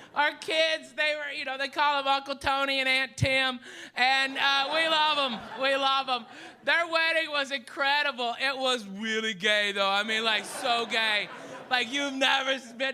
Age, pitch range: 20-39, 250-295 Hz